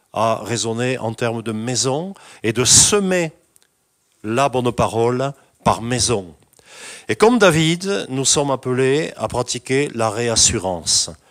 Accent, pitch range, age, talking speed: French, 115-140 Hz, 50-69, 125 wpm